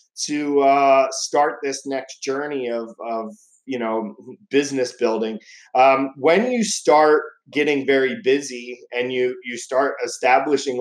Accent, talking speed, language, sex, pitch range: American, 135 wpm, English, male, 135-170 Hz